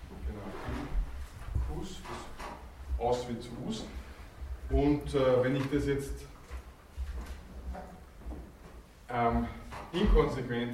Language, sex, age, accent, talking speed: German, male, 20-39, Austrian, 80 wpm